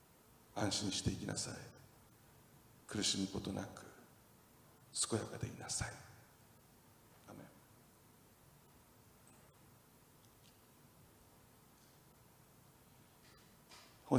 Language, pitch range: Japanese, 95-120 Hz